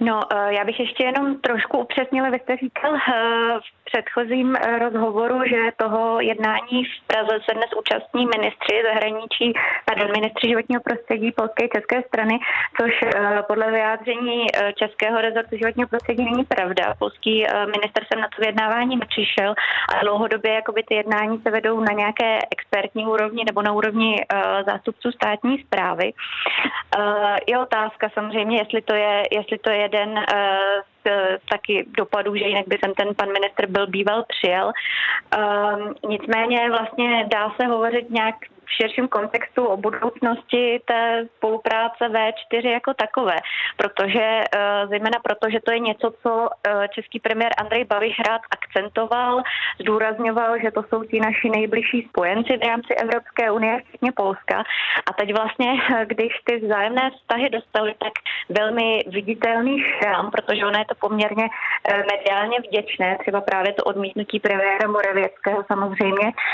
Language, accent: Czech, native